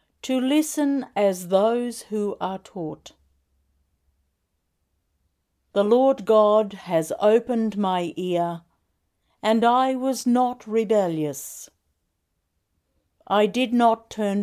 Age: 60-79